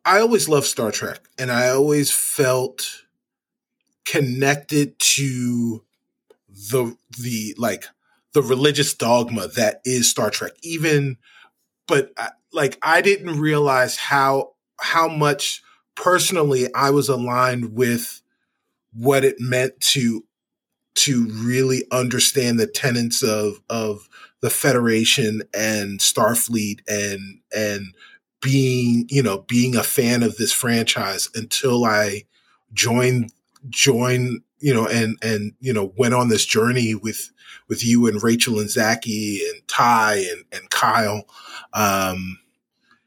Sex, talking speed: male, 125 wpm